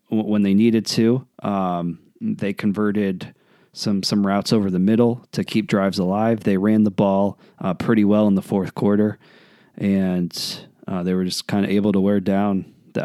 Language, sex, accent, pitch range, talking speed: English, male, American, 95-110 Hz, 185 wpm